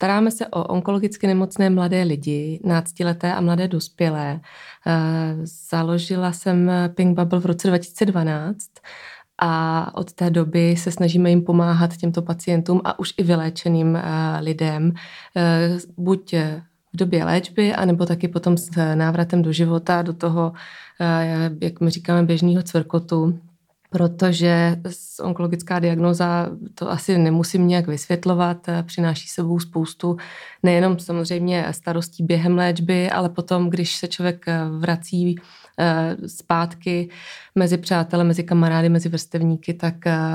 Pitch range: 165-180 Hz